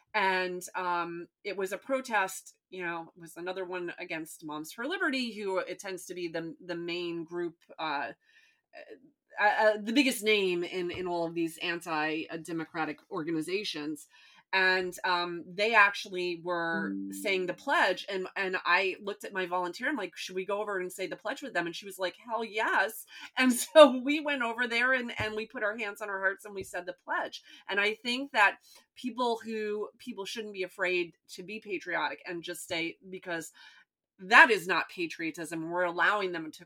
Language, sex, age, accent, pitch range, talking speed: English, female, 30-49, American, 170-225 Hz, 190 wpm